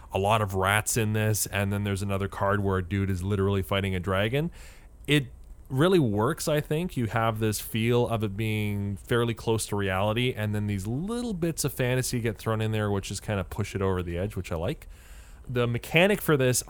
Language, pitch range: English, 100-135 Hz